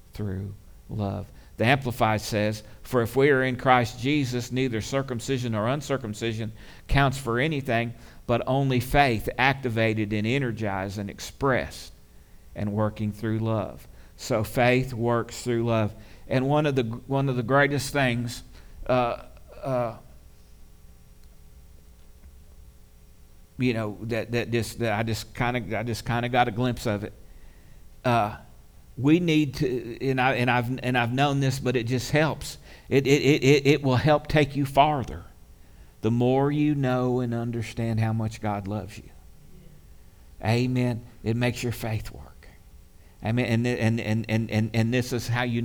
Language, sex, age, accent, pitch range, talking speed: English, male, 50-69, American, 105-125 Hz, 155 wpm